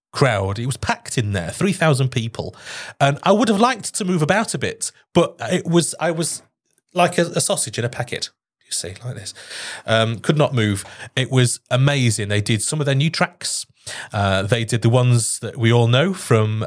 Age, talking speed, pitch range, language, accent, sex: 30-49, 210 wpm, 110-170 Hz, English, British, male